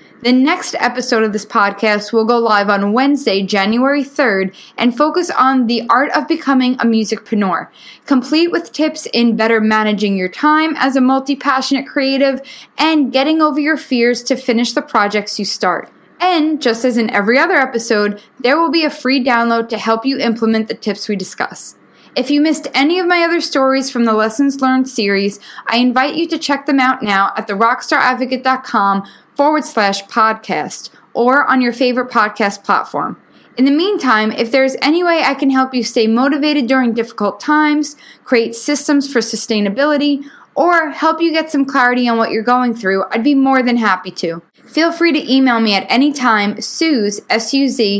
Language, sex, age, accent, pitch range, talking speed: English, female, 10-29, American, 220-280 Hz, 180 wpm